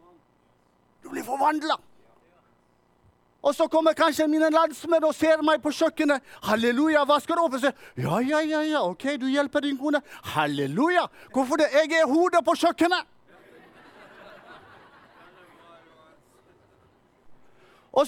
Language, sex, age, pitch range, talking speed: English, male, 40-59, 220-320 Hz, 125 wpm